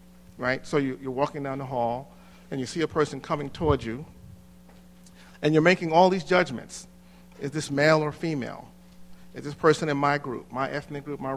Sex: male